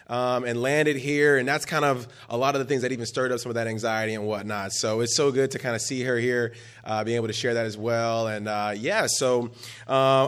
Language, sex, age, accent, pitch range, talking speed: English, male, 20-39, American, 125-175 Hz, 275 wpm